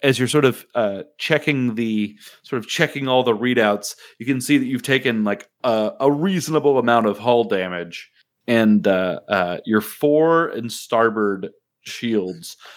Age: 30-49